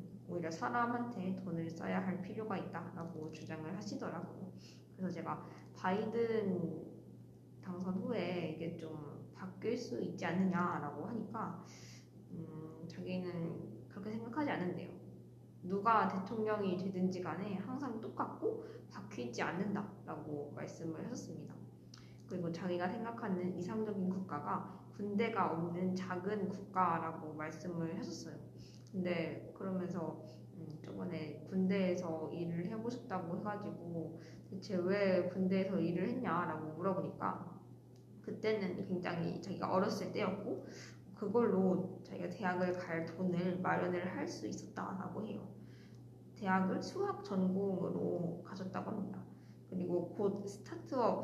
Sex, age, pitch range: female, 20-39, 170-205 Hz